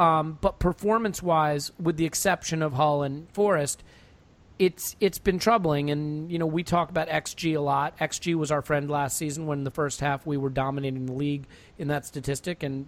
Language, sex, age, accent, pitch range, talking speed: English, male, 40-59, American, 140-170 Hz, 195 wpm